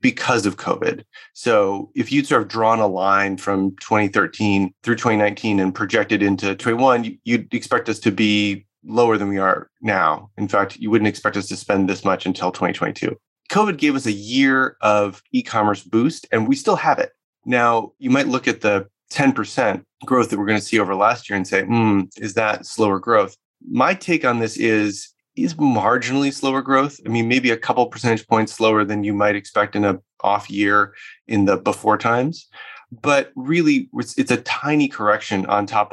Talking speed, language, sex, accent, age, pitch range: 190 wpm, English, male, American, 30-49, 100-125 Hz